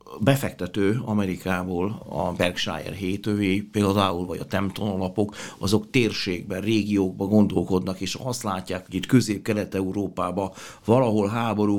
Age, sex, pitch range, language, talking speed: 60-79, male, 95-115 Hz, Hungarian, 105 wpm